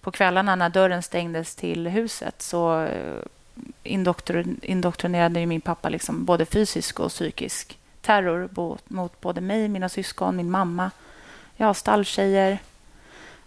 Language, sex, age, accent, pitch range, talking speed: Swedish, female, 30-49, native, 175-205 Hz, 115 wpm